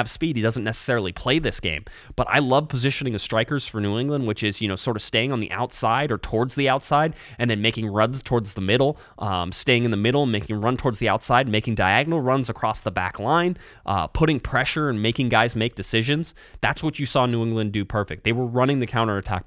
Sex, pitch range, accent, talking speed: male, 105-130 Hz, American, 235 wpm